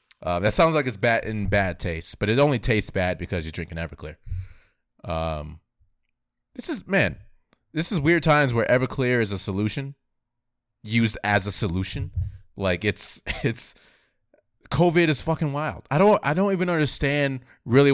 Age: 30-49